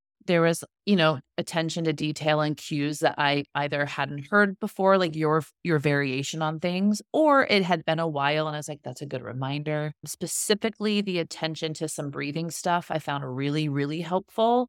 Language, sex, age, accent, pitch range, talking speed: English, female, 30-49, American, 145-190 Hz, 190 wpm